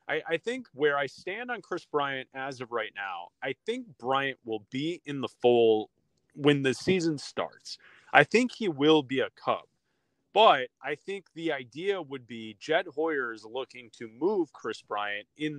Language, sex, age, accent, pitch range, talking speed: English, male, 20-39, American, 125-165 Hz, 180 wpm